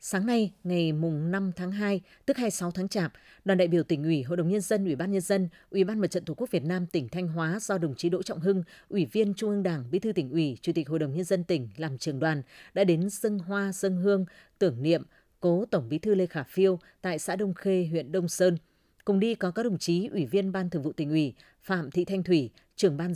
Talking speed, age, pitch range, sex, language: 260 wpm, 20-39, 165-200 Hz, female, Vietnamese